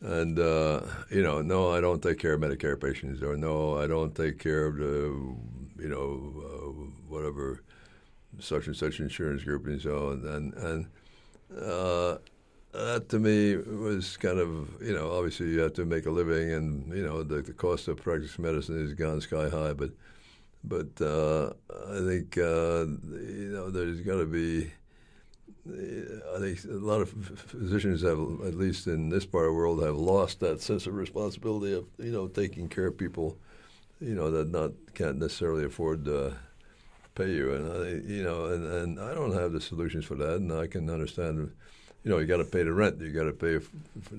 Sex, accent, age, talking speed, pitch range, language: male, American, 60-79, 190 wpm, 75-90 Hz, English